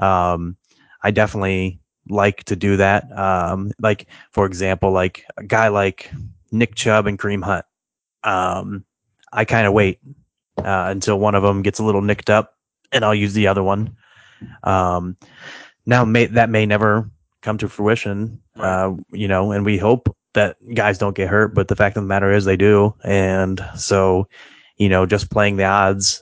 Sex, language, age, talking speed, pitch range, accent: male, English, 20-39, 180 wpm, 95-110 Hz, American